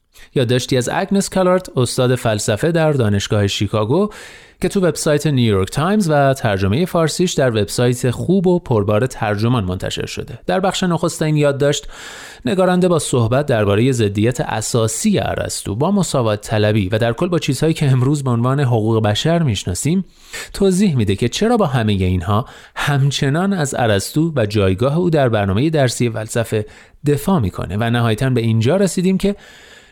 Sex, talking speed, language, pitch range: male, 160 wpm, Persian, 110-180 Hz